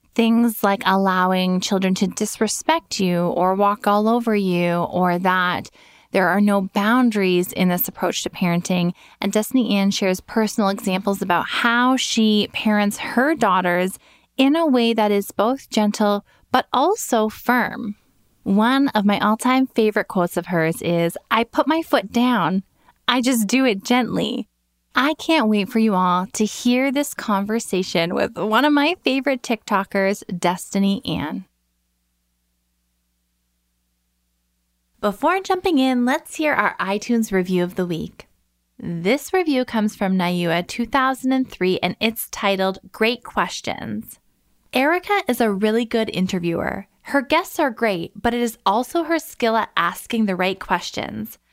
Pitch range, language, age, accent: 180-245 Hz, English, 20-39, American